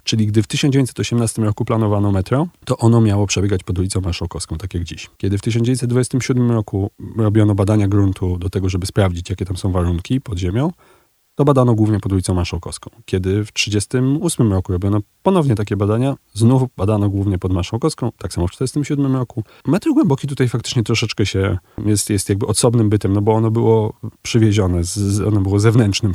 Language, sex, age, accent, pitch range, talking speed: Polish, male, 30-49, native, 100-120 Hz, 175 wpm